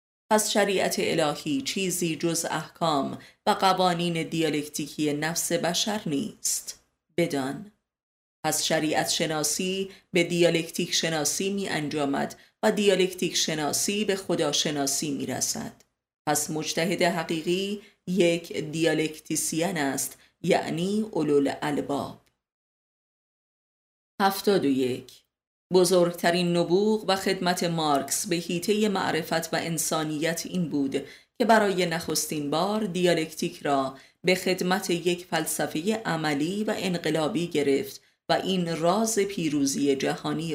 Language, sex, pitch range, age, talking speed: Persian, female, 150-185 Hz, 30-49, 105 wpm